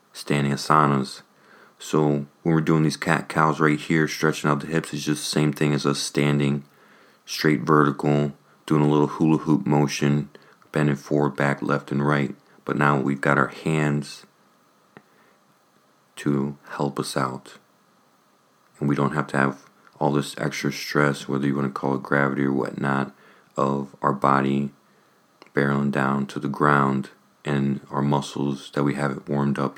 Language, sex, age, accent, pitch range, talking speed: English, male, 40-59, American, 70-75 Hz, 165 wpm